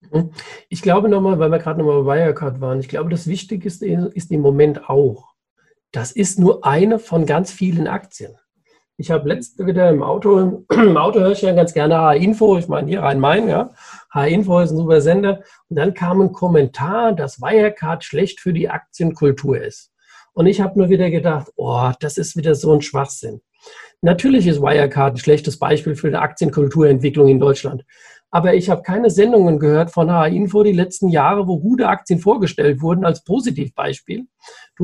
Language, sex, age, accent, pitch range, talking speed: German, male, 50-69, German, 155-205 Hz, 185 wpm